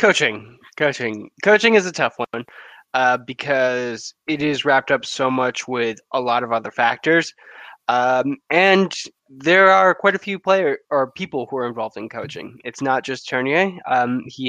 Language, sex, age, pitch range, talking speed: English, male, 20-39, 120-160 Hz, 175 wpm